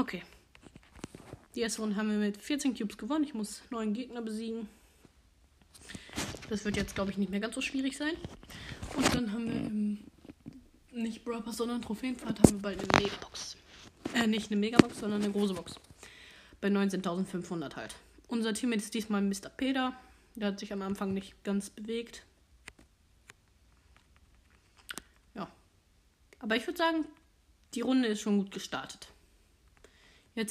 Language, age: German, 20-39